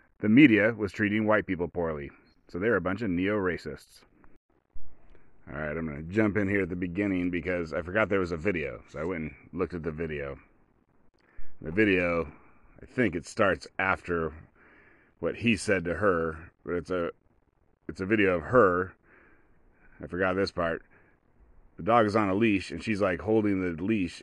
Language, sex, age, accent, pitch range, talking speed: English, male, 30-49, American, 85-100 Hz, 185 wpm